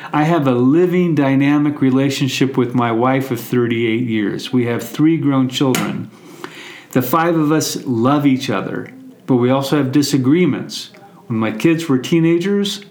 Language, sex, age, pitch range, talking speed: English, male, 40-59, 130-155 Hz, 160 wpm